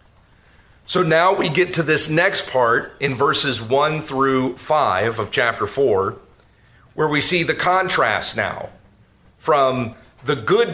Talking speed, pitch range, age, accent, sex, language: 140 wpm, 125-160 Hz, 40-59, American, male, English